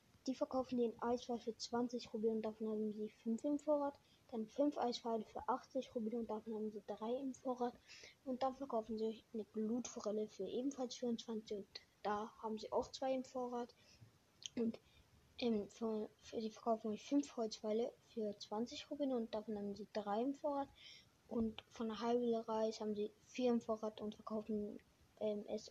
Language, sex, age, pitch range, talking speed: German, female, 20-39, 215-245 Hz, 180 wpm